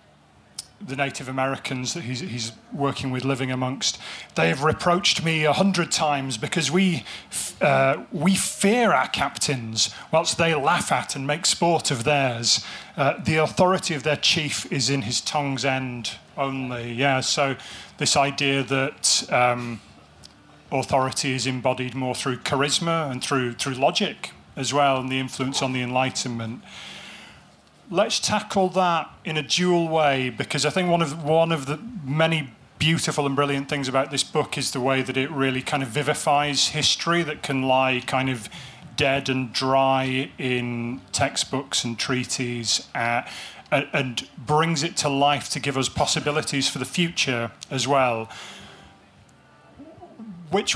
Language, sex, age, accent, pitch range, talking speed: English, male, 30-49, British, 130-155 Hz, 155 wpm